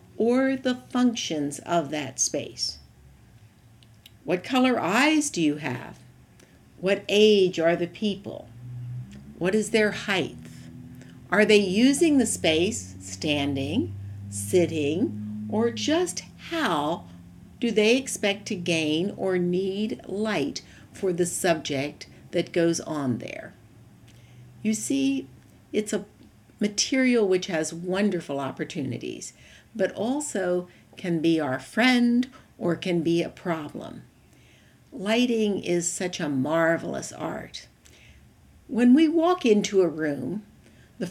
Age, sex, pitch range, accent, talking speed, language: 60-79, female, 140-210 Hz, American, 115 wpm, English